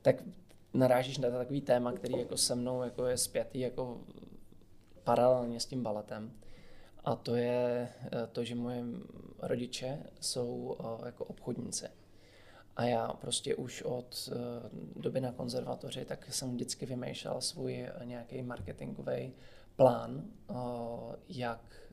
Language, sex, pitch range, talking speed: Czech, male, 115-125 Hz, 125 wpm